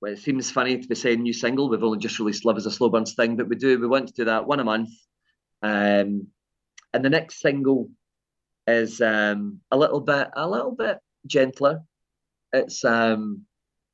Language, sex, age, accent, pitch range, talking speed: English, male, 30-49, British, 105-130 Hz, 200 wpm